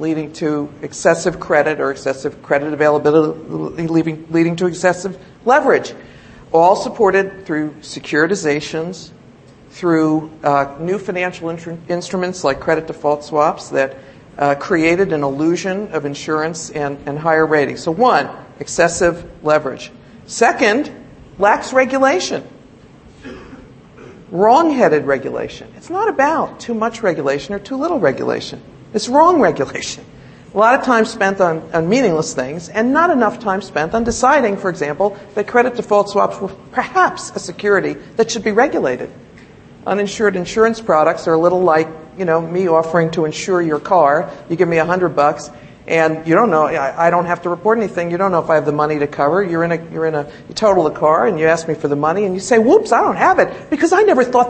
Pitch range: 150-200 Hz